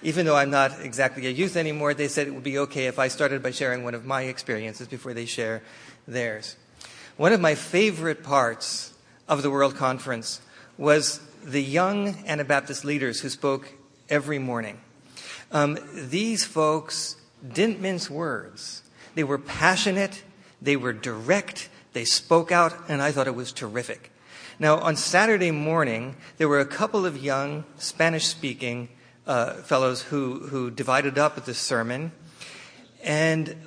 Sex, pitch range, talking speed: male, 130-165 Hz, 155 wpm